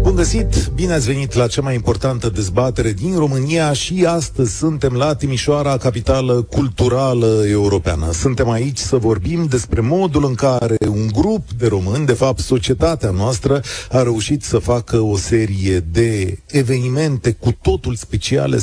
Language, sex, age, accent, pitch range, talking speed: Romanian, male, 40-59, native, 100-135 Hz, 150 wpm